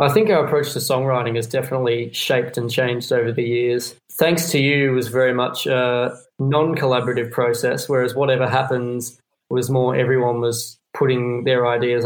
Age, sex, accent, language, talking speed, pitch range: 20-39, male, Australian, English, 170 wpm, 120-135 Hz